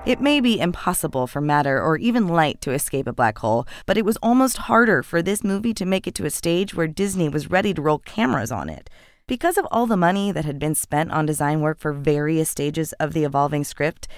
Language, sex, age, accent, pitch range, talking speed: English, female, 20-39, American, 155-230 Hz, 235 wpm